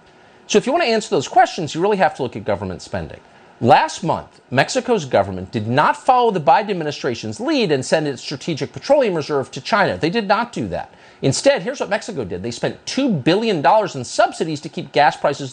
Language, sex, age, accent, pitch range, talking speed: English, male, 50-69, American, 125-210 Hz, 210 wpm